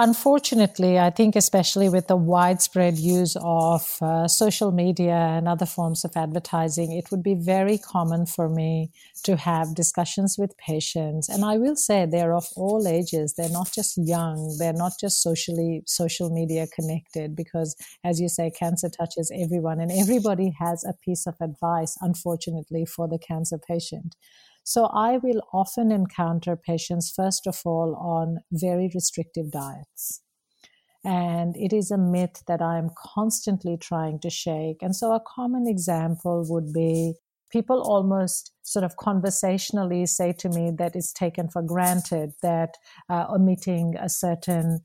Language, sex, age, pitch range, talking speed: English, female, 50-69, 165-190 Hz, 155 wpm